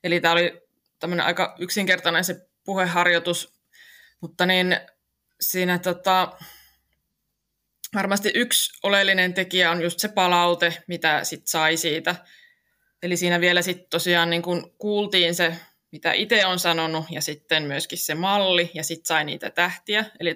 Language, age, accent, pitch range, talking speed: Finnish, 20-39, native, 170-195 Hz, 140 wpm